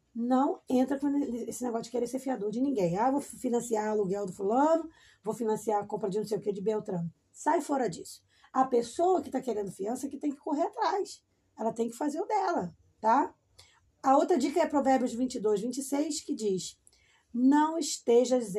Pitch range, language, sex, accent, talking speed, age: 205-270 Hz, Portuguese, female, Brazilian, 195 wpm, 20-39